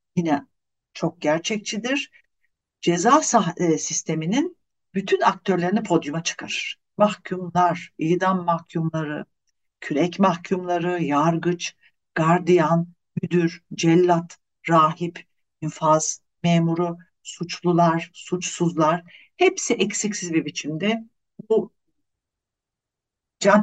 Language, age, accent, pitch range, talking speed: Turkish, 60-79, native, 165-220 Hz, 80 wpm